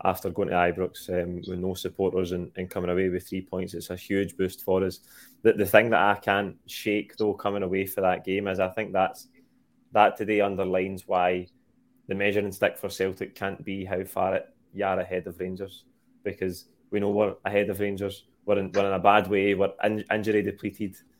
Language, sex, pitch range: English, male, 95-100 Hz